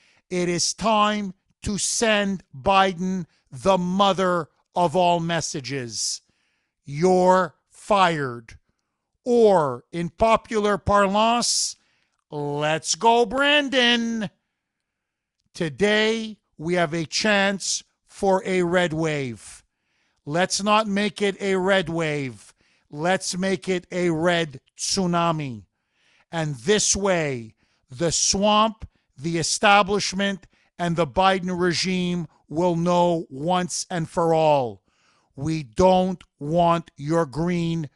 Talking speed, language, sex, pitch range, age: 100 wpm, English, male, 155-195 Hz, 50-69